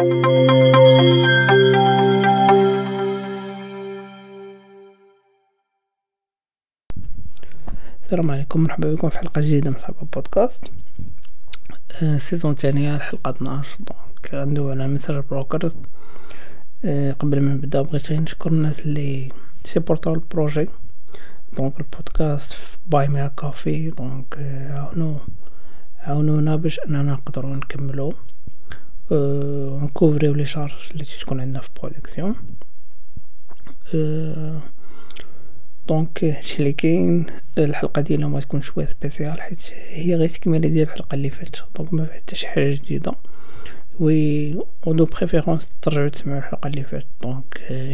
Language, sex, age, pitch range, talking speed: Arabic, male, 40-59, 140-165 Hz, 115 wpm